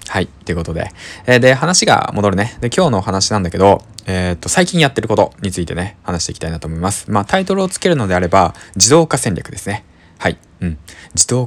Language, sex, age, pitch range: Japanese, male, 20-39, 85-120 Hz